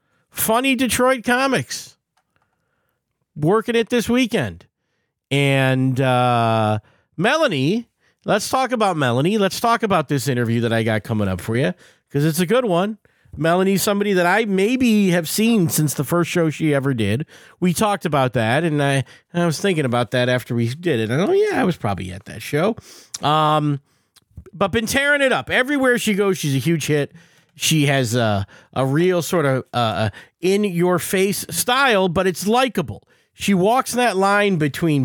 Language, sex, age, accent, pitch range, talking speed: English, male, 40-59, American, 125-190 Hz, 175 wpm